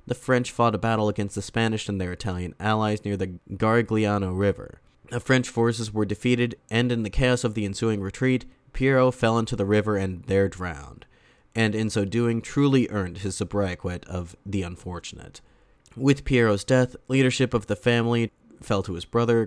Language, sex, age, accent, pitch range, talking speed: English, male, 30-49, American, 95-120 Hz, 180 wpm